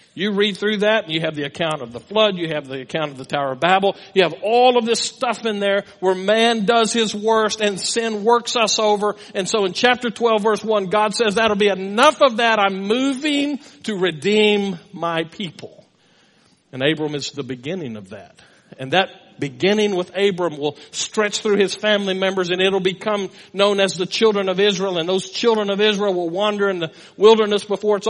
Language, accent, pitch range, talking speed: English, American, 175-220 Hz, 210 wpm